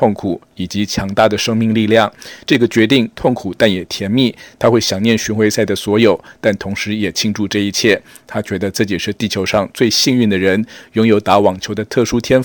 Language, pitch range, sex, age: Chinese, 100-115 Hz, male, 50-69